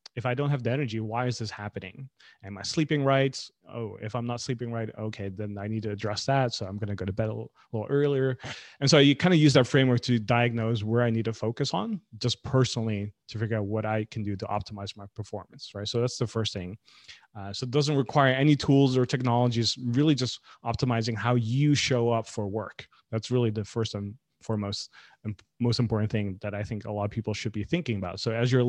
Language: English